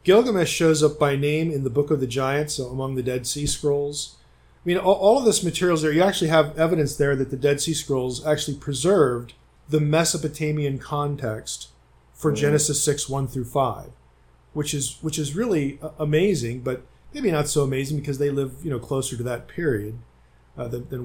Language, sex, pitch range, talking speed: English, male, 120-155 Hz, 200 wpm